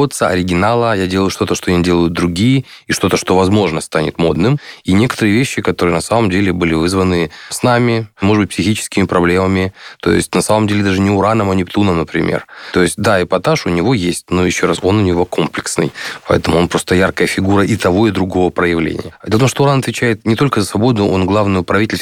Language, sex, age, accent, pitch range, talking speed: Russian, male, 20-39, native, 90-105 Hz, 205 wpm